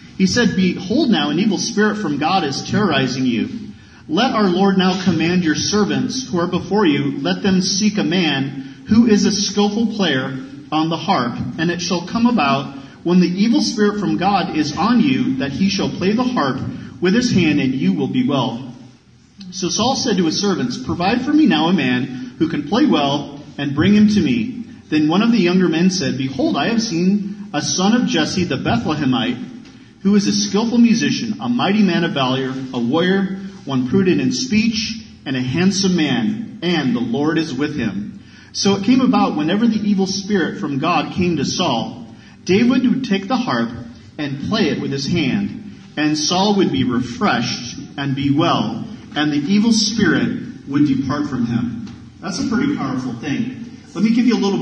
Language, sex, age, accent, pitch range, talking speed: English, male, 40-59, American, 150-230 Hz, 195 wpm